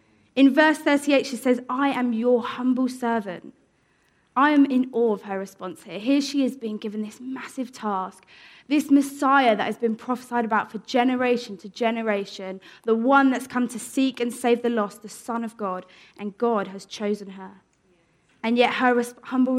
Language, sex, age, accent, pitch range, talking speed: English, female, 20-39, British, 200-250 Hz, 185 wpm